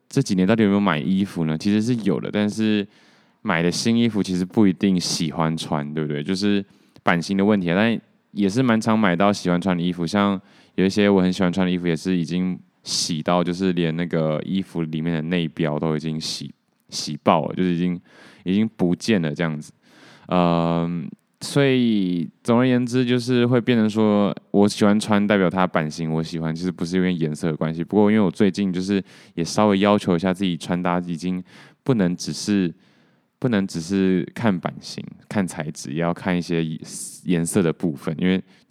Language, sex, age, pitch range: Chinese, male, 20-39, 85-100 Hz